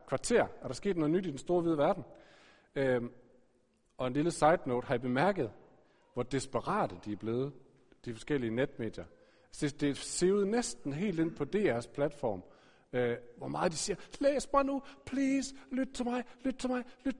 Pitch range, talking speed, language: 140-220 Hz, 190 wpm, Danish